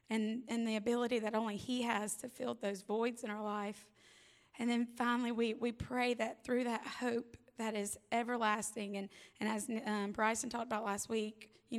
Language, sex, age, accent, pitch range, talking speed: English, female, 20-39, American, 215-235 Hz, 195 wpm